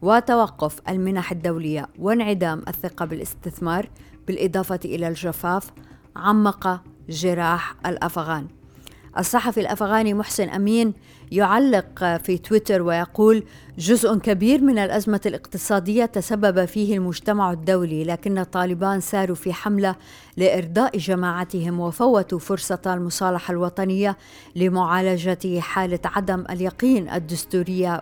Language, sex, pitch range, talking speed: Arabic, female, 180-205 Hz, 95 wpm